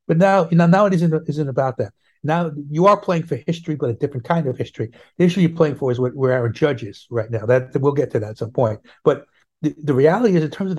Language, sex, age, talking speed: English, male, 60-79, 285 wpm